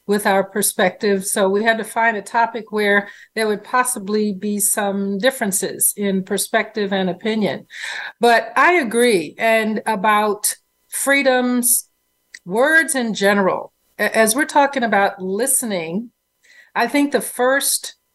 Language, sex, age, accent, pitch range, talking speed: English, female, 50-69, American, 200-250 Hz, 130 wpm